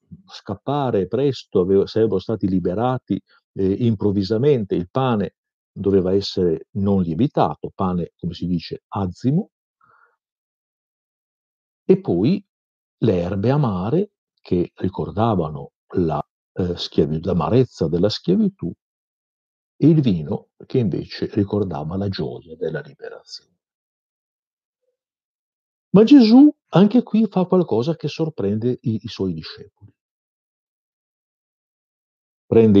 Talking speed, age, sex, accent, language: 100 wpm, 50-69, male, native, Italian